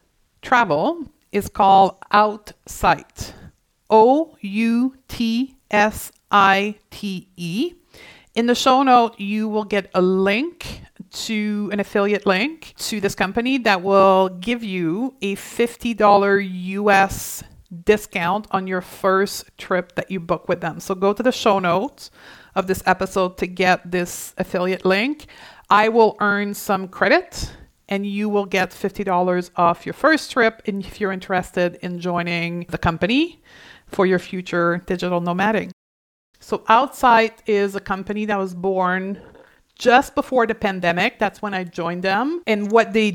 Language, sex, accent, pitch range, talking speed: English, female, American, 185-225 Hz, 145 wpm